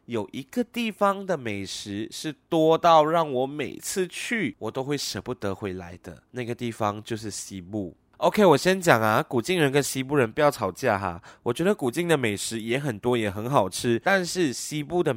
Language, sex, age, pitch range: Chinese, male, 20-39, 110-165 Hz